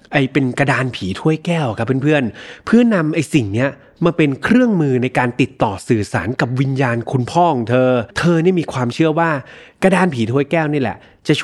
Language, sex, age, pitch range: Thai, male, 20-39, 120-155 Hz